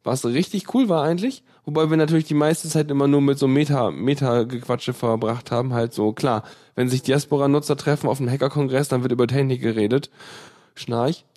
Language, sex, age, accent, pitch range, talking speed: German, male, 10-29, German, 130-150 Hz, 180 wpm